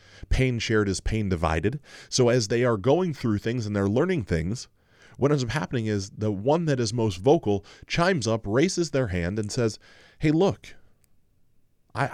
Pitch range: 100-140 Hz